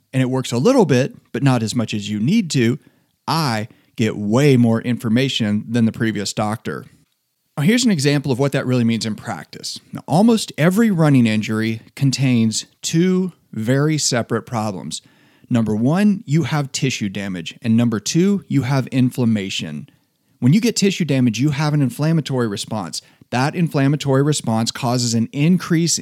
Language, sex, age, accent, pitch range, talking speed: English, male, 40-59, American, 115-150 Hz, 165 wpm